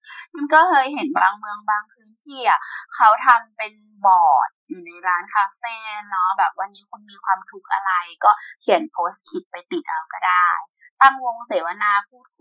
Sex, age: female, 20-39